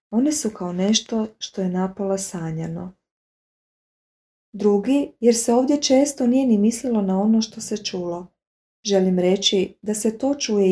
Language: Croatian